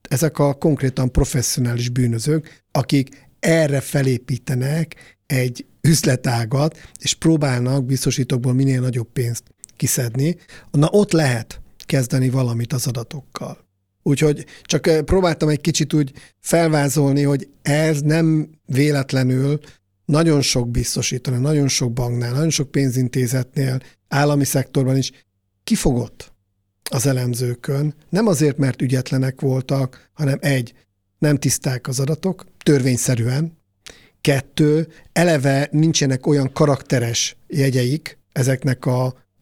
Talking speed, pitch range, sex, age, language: 105 wpm, 125-150 Hz, male, 50-69, Hungarian